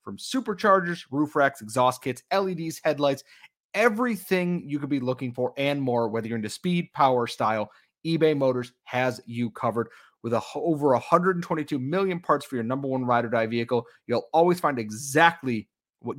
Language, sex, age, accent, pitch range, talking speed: English, male, 30-49, American, 115-160 Hz, 165 wpm